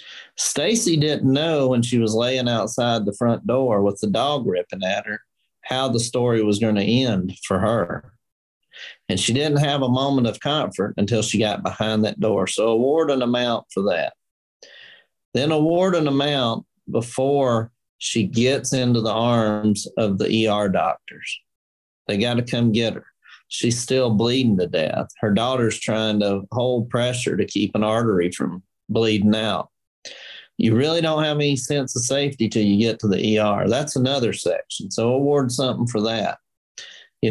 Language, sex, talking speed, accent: English, male, 170 wpm, American